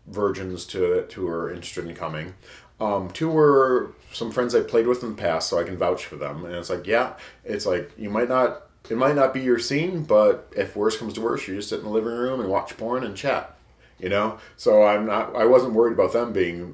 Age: 40-59